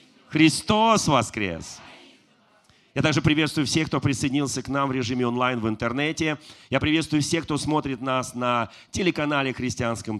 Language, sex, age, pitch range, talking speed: Russian, male, 40-59, 120-160 Hz, 140 wpm